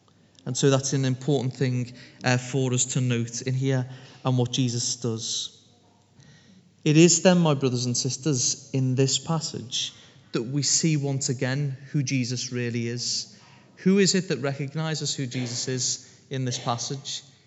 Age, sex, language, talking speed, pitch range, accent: 30-49, male, English, 160 wpm, 125-145 Hz, British